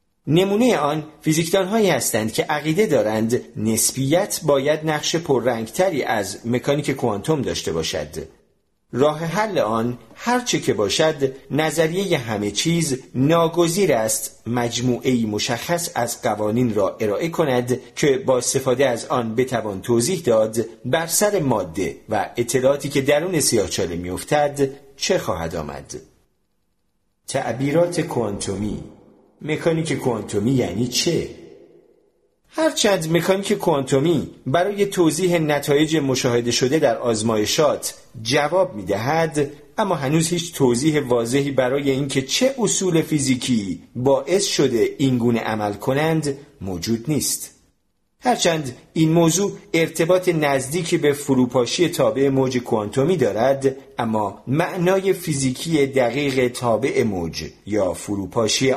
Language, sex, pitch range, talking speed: Persian, male, 120-170 Hz, 110 wpm